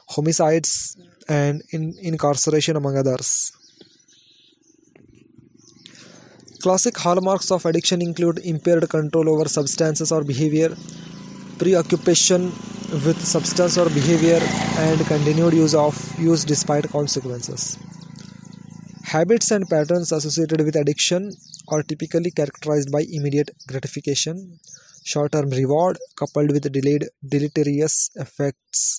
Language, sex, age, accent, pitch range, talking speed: English, male, 20-39, Indian, 145-170 Hz, 95 wpm